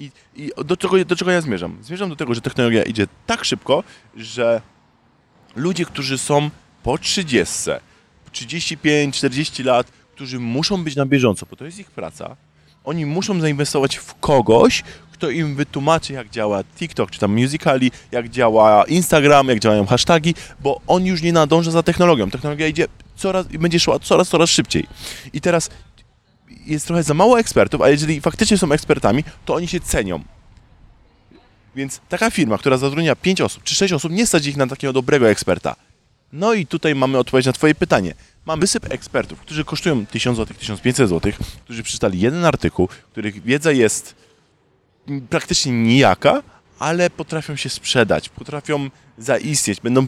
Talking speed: 165 wpm